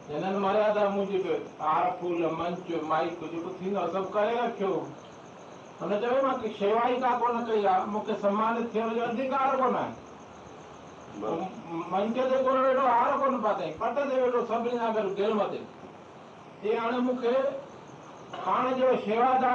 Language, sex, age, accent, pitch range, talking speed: Hindi, male, 60-79, native, 205-240 Hz, 60 wpm